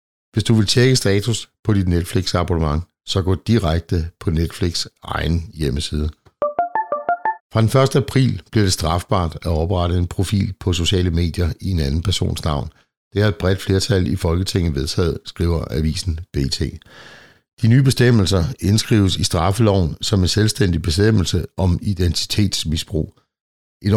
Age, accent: 60-79, native